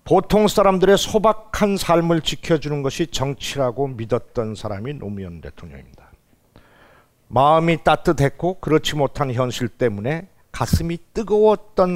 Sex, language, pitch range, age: male, Korean, 120-180 Hz, 50-69